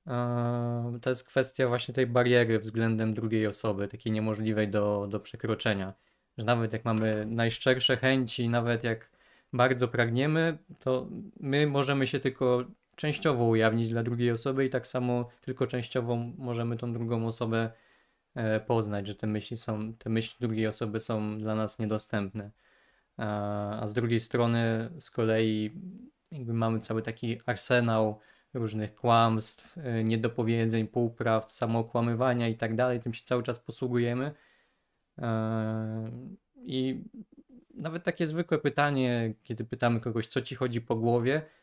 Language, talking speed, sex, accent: Polish, 135 wpm, male, native